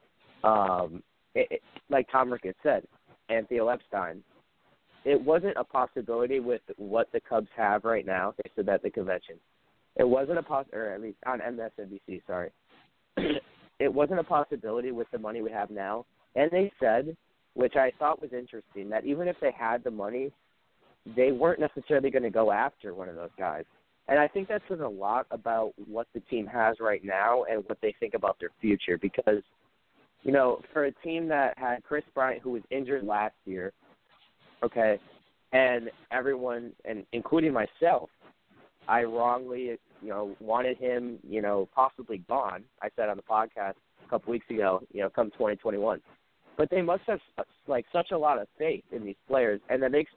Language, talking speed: English, 185 wpm